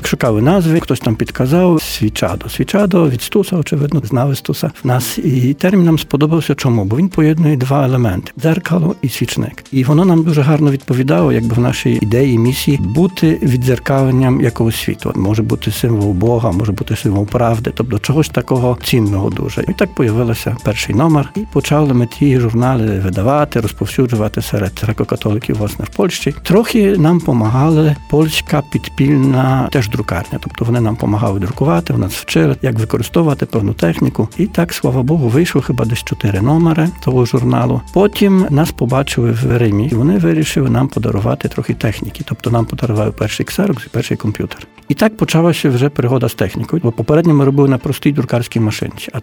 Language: Ukrainian